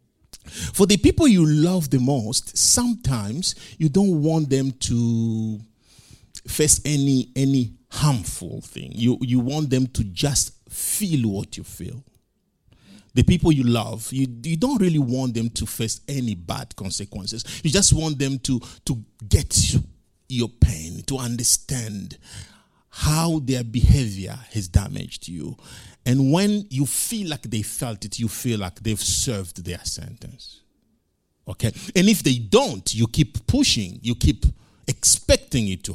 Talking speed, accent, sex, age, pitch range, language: 145 wpm, Nigerian, male, 50-69, 105-140 Hz, English